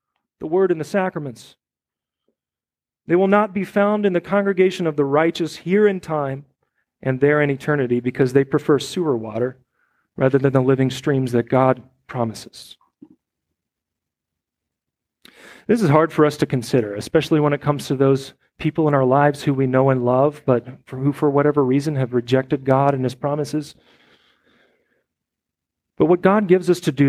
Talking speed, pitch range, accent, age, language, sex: 170 wpm, 130-175 Hz, American, 40-59, English, male